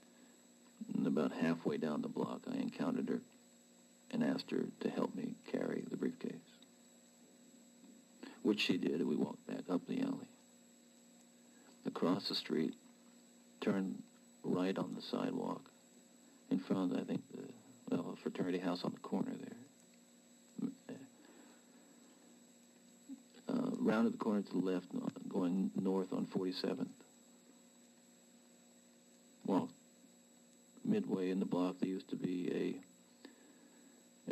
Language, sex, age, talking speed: English, male, 50-69, 120 wpm